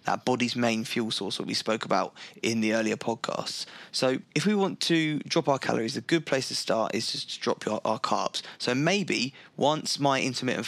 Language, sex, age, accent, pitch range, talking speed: English, male, 20-39, British, 120-145 Hz, 215 wpm